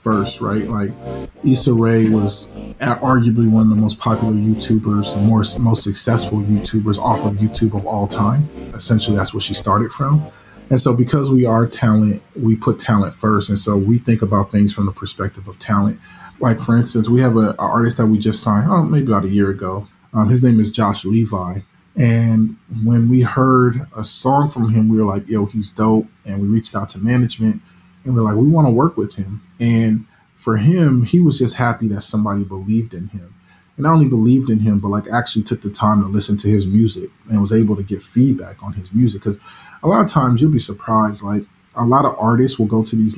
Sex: male